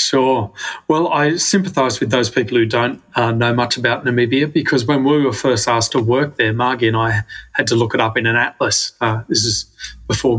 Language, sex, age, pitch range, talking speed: English, male, 30-49, 115-145 Hz, 220 wpm